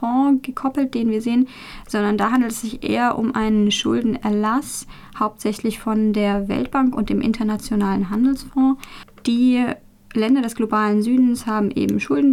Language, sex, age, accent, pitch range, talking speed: German, female, 10-29, German, 210-245 Hz, 140 wpm